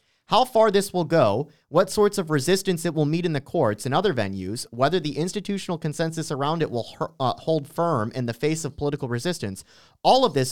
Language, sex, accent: English, male, American